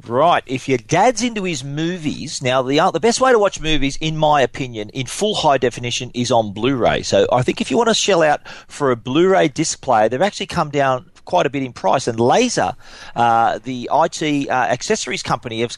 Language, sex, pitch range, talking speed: English, male, 130-165 Hz, 215 wpm